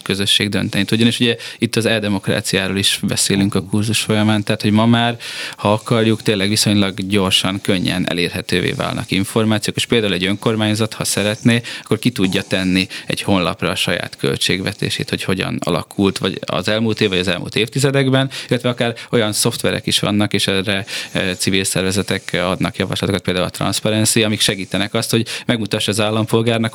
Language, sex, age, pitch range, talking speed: Hungarian, male, 20-39, 100-120 Hz, 165 wpm